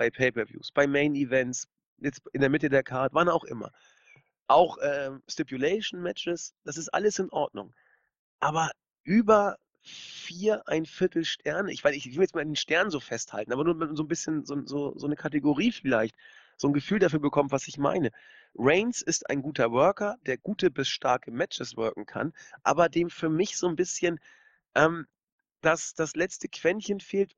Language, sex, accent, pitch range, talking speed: German, male, German, 135-180 Hz, 180 wpm